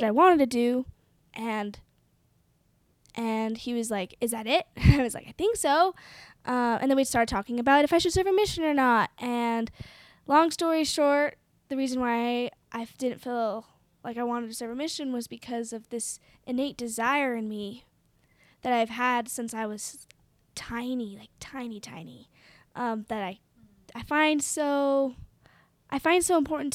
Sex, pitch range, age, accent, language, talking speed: female, 225-280 Hz, 10-29, American, English, 175 wpm